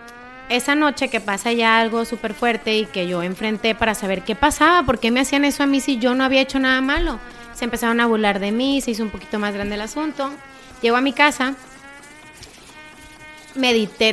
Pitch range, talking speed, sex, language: 210-260 Hz, 210 wpm, female, Spanish